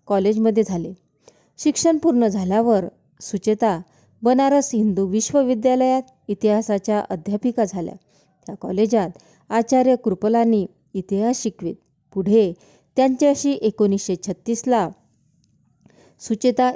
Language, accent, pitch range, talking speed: Marathi, native, 195-245 Hz, 60 wpm